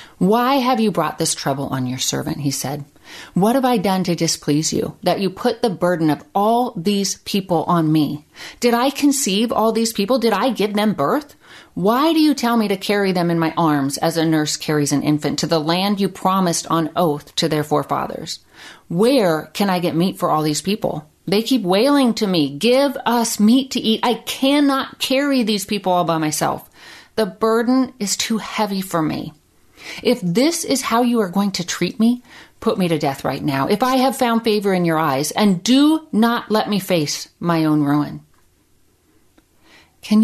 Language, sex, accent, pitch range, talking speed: English, female, American, 160-230 Hz, 200 wpm